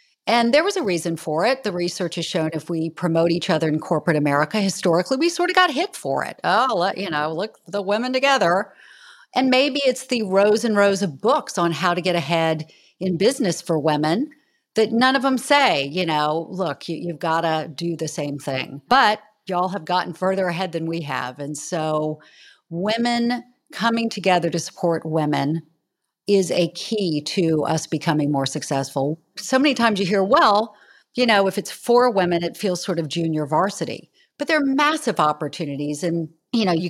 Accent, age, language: American, 40-59, English